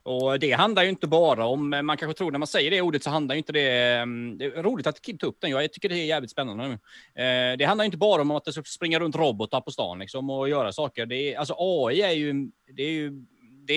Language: Swedish